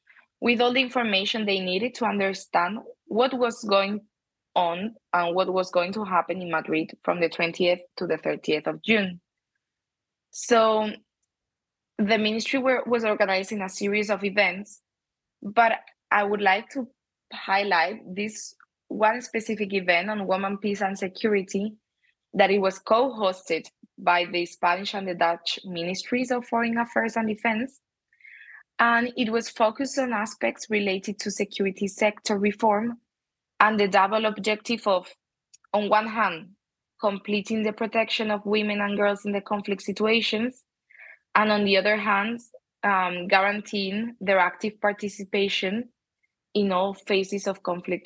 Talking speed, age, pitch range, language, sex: 140 wpm, 20-39, 185-220 Hz, English, female